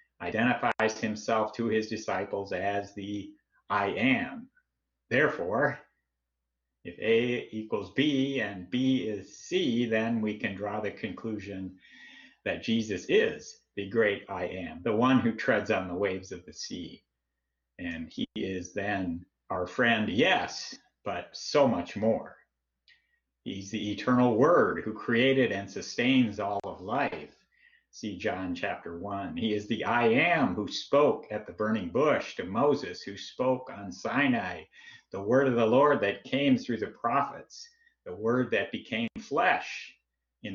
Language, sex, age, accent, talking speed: English, male, 50-69, American, 150 wpm